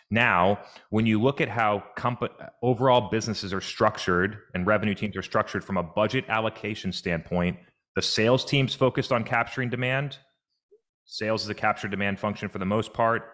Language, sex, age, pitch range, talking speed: English, male, 30-49, 95-115 Hz, 170 wpm